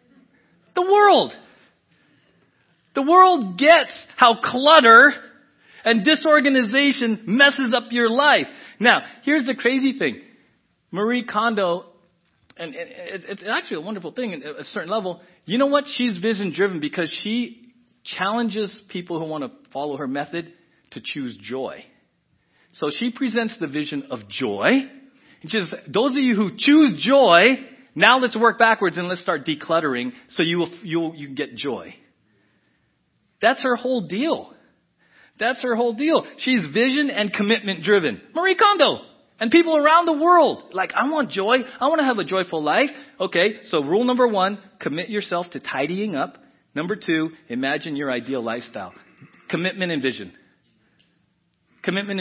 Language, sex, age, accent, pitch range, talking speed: English, male, 40-59, American, 170-265 Hz, 150 wpm